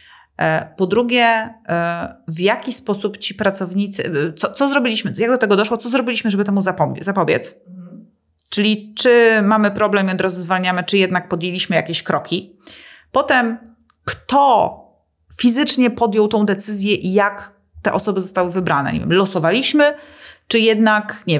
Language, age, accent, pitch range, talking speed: Polish, 30-49, native, 180-220 Hz, 130 wpm